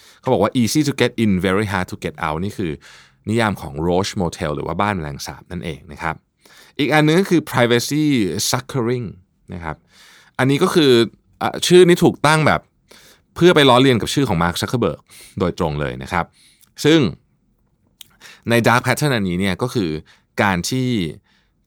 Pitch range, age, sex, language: 90-130 Hz, 20-39, male, Thai